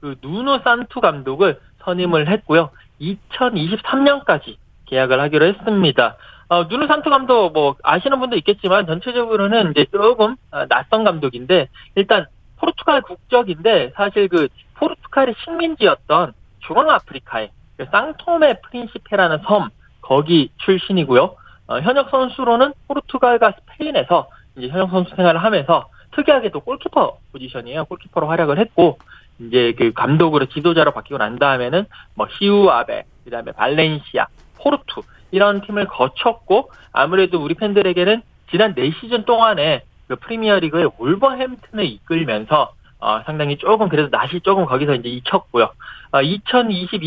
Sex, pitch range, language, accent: male, 155-230 Hz, Korean, native